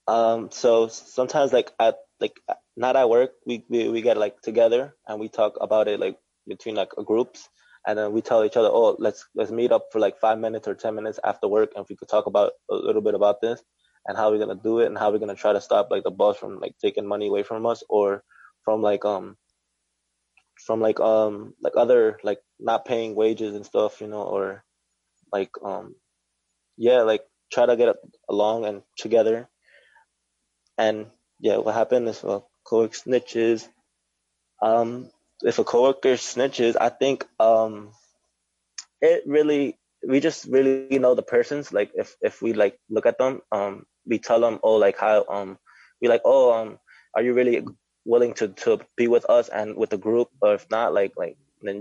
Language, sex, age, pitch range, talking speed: English, male, 20-39, 105-125 Hz, 200 wpm